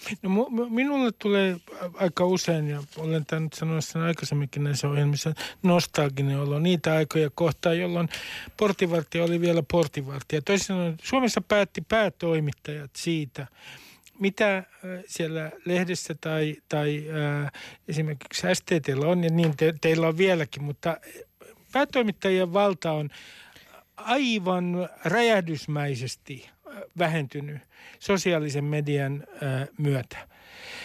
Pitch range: 150-195 Hz